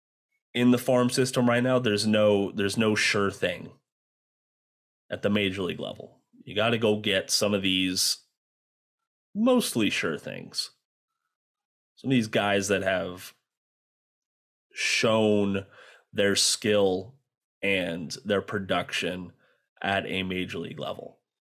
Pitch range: 95-115 Hz